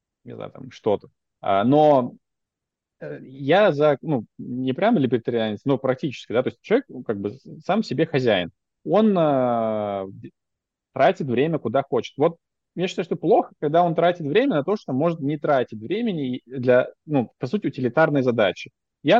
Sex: male